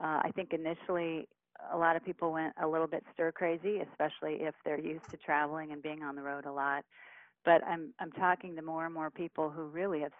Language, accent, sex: English, American, female